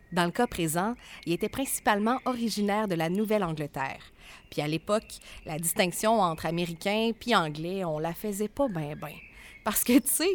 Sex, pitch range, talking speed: female, 170-235 Hz, 175 wpm